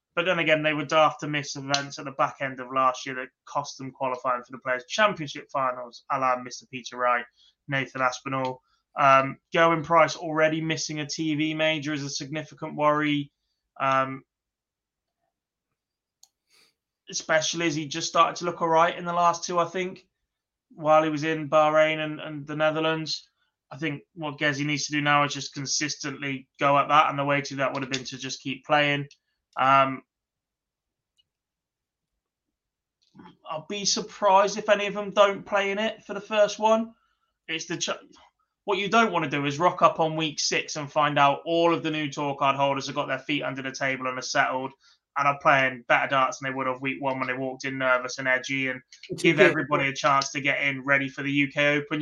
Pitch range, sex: 135-160 Hz, male